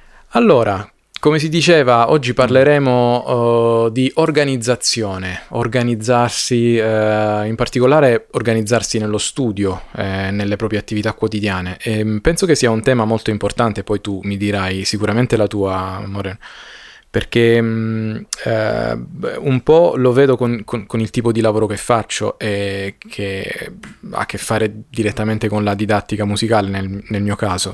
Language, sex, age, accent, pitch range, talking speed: Italian, male, 20-39, native, 100-120 Hz, 145 wpm